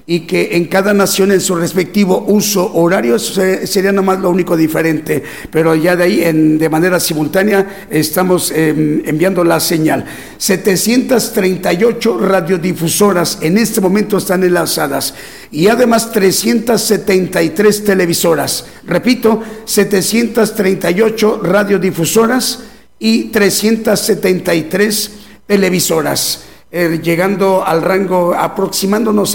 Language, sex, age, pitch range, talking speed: Spanish, male, 50-69, 170-205 Hz, 100 wpm